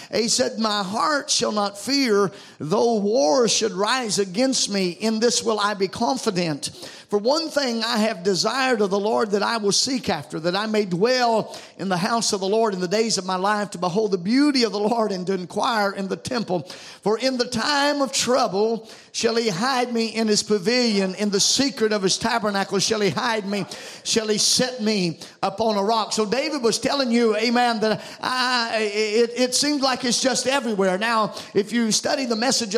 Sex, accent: male, American